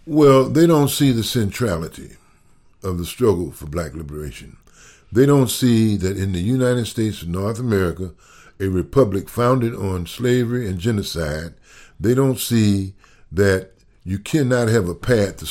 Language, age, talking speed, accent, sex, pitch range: English, 60-79, 155 wpm, American, male, 95-125 Hz